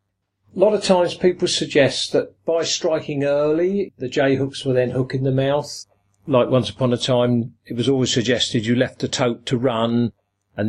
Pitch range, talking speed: 105-150 Hz, 195 wpm